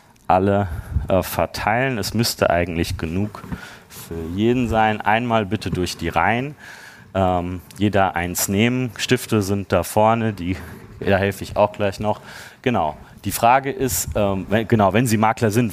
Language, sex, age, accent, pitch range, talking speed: German, male, 30-49, German, 100-125 Hz, 155 wpm